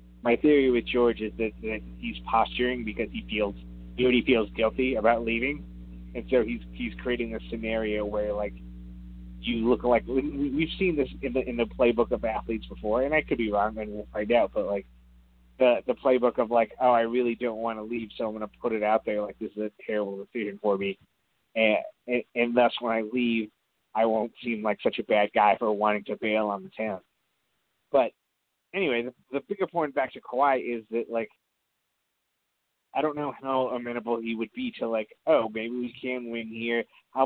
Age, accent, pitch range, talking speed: 30-49, American, 105-125 Hz, 210 wpm